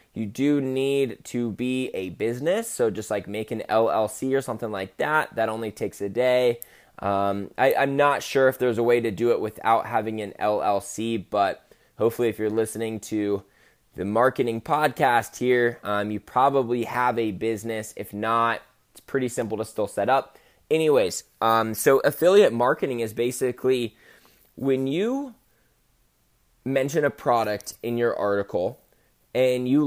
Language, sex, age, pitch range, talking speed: English, male, 20-39, 110-135 Hz, 160 wpm